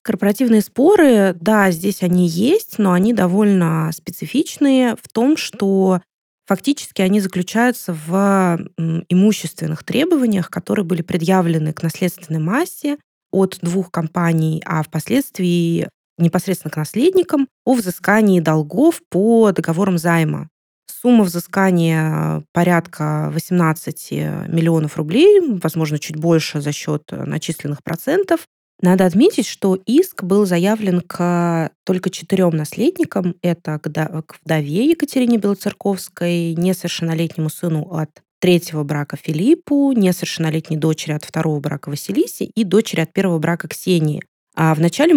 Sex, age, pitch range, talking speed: female, 20-39, 160-210 Hz, 115 wpm